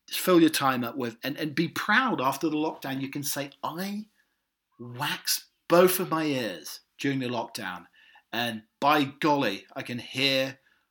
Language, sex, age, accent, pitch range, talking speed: English, male, 40-59, British, 110-140 Hz, 165 wpm